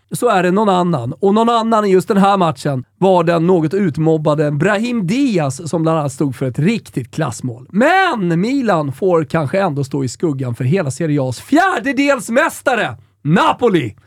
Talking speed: 175 wpm